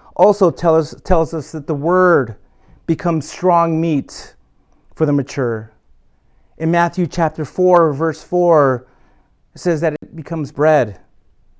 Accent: American